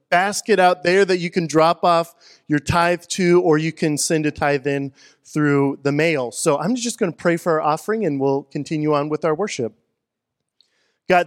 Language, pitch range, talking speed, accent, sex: English, 140-175 Hz, 200 wpm, American, male